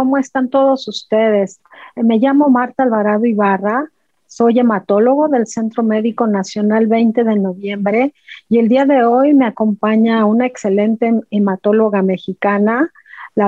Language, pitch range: Spanish, 205-245 Hz